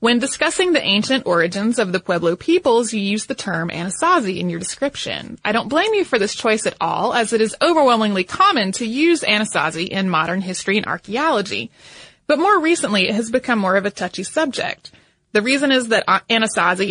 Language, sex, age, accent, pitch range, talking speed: English, female, 20-39, American, 190-265 Hz, 195 wpm